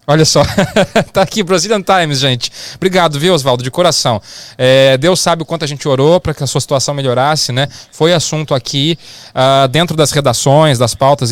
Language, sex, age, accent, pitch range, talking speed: English, male, 20-39, Brazilian, 130-175 Hz, 190 wpm